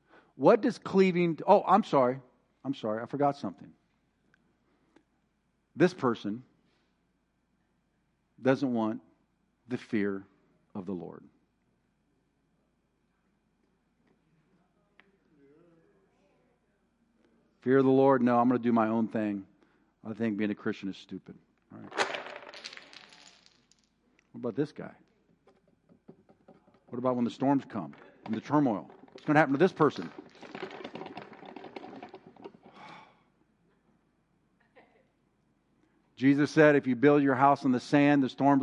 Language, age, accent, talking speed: English, 50-69, American, 115 wpm